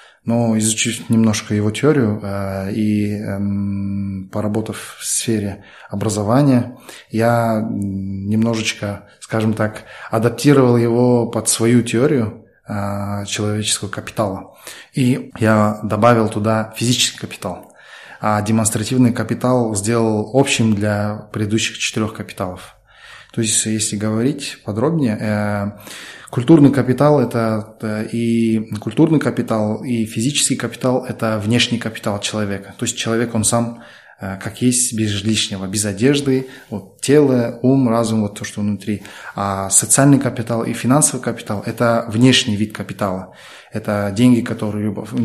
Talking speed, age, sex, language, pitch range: 120 wpm, 20-39, male, Russian, 105-120 Hz